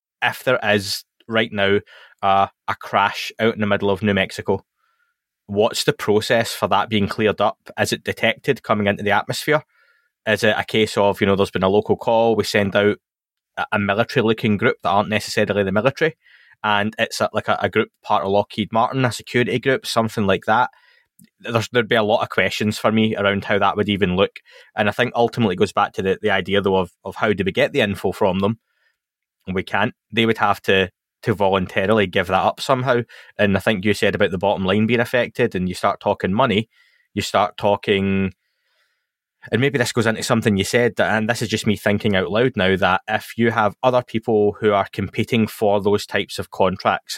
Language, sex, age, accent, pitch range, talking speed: English, male, 20-39, British, 100-115 Hz, 215 wpm